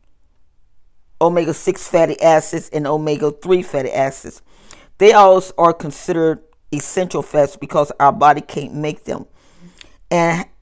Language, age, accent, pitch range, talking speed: English, 40-59, American, 150-180 Hz, 125 wpm